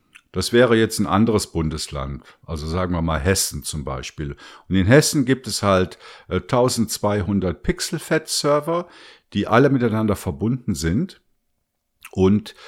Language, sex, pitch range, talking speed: German, male, 90-115 Hz, 135 wpm